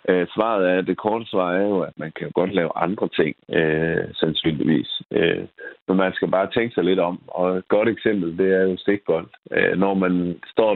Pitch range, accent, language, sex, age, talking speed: 80-95 Hz, native, Danish, male, 60-79, 225 wpm